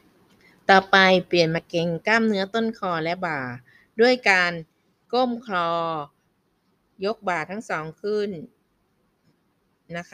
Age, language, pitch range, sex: 20-39, Thai, 170-200 Hz, female